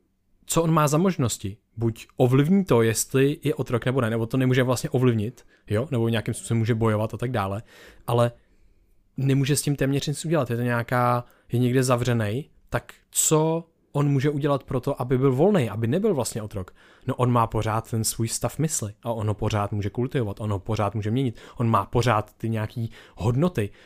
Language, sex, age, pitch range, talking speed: Czech, male, 20-39, 110-130 Hz, 195 wpm